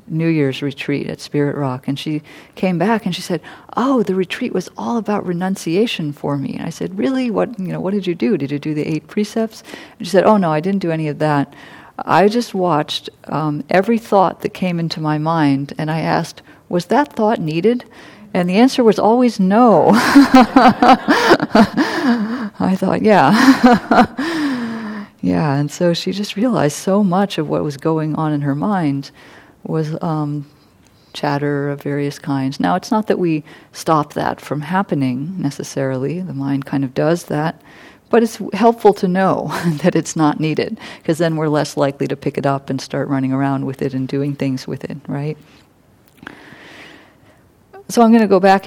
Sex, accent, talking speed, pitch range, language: female, American, 185 wpm, 145-205 Hz, English